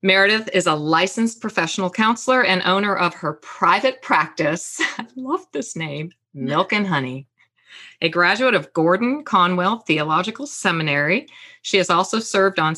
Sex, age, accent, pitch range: female, 40-59, American, 155-225 Hz